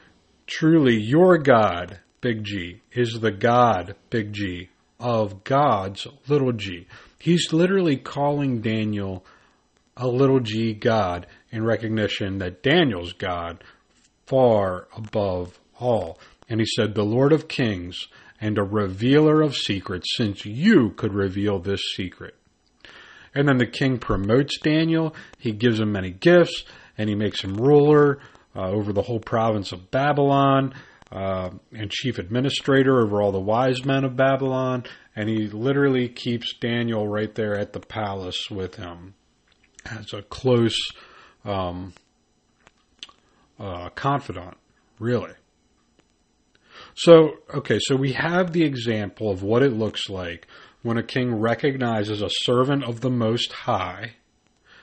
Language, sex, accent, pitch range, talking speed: English, male, American, 100-135 Hz, 135 wpm